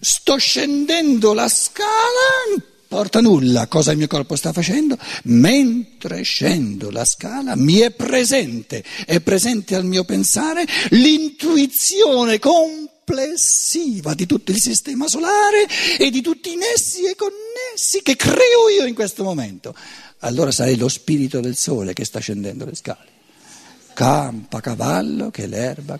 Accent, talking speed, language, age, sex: native, 140 wpm, Italian, 50-69, male